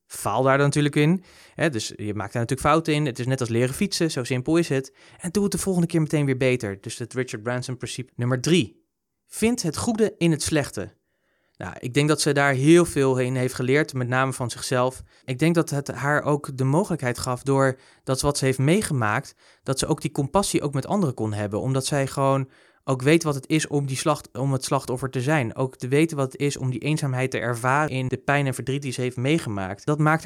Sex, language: male, Dutch